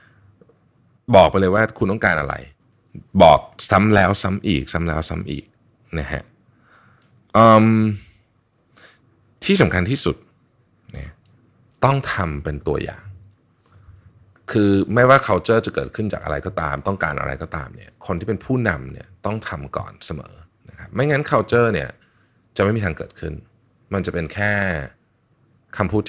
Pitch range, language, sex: 85-110 Hz, Thai, male